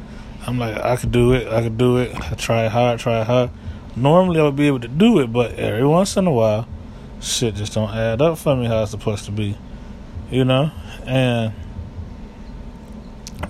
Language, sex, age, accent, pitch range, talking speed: English, male, 20-39, American, 105-130 Hz, 195 wpm